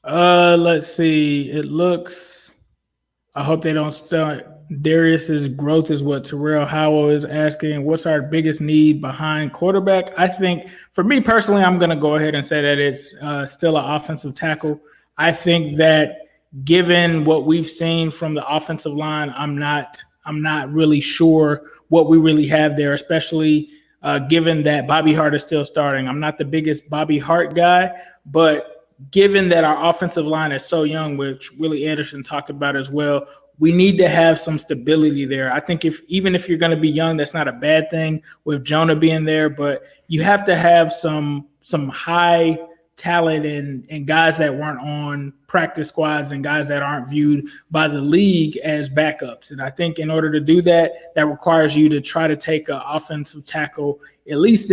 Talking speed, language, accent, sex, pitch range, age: 185 wpm, English, American, male, 150-165 Hz, 20-39